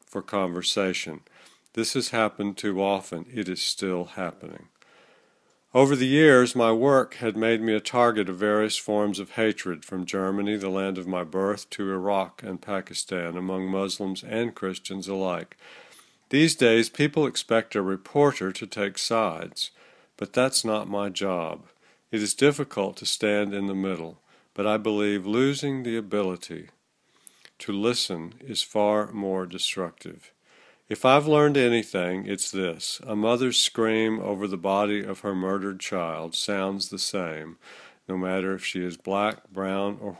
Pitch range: 95-115 Hz